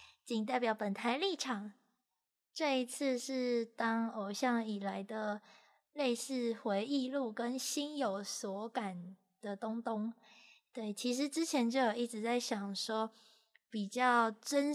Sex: female